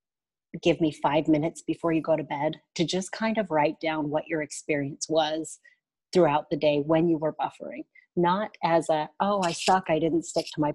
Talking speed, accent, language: 205 wpm, American, English